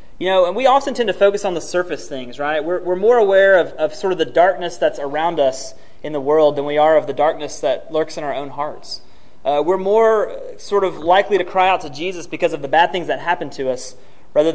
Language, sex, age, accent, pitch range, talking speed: English, male, 30-49, American, 145-185 Hz, 255 wpm